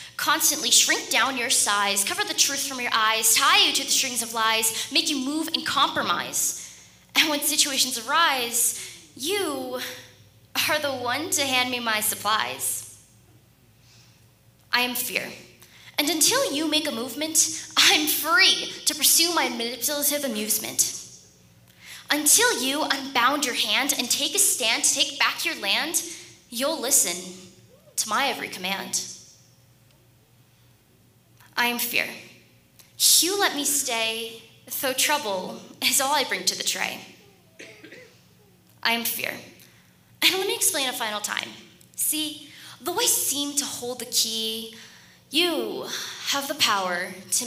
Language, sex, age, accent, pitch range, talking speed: English, female, 10-29, American, 200-295 Hz, 140 wpm